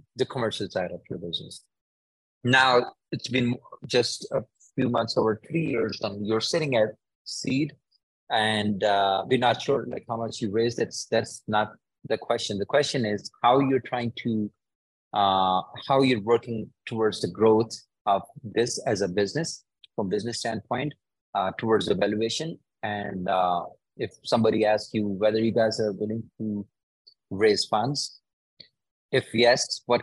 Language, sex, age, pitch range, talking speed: English, male, 30-49, 100-120 Hz, 155 wpm